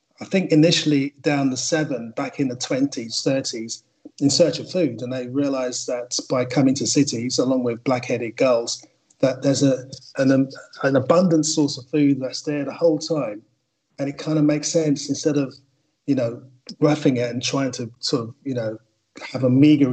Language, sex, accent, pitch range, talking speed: English, male, British, 125-145 Hz, 195 wpm